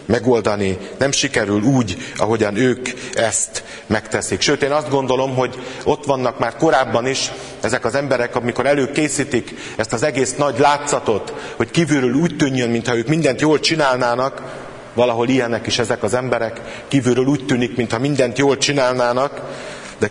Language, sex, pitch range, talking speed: Hungarian, male, 115-140 Hz, 150 wpm